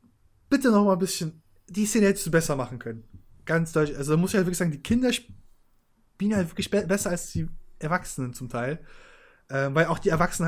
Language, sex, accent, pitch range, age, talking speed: German, male, German, 140-195 Hz, 20-39, 220 wpm